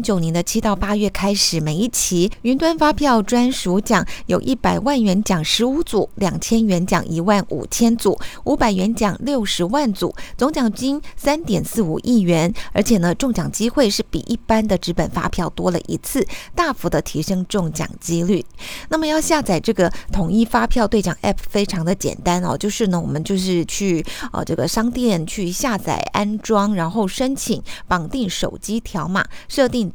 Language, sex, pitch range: Chinese, female, 175-235 Hz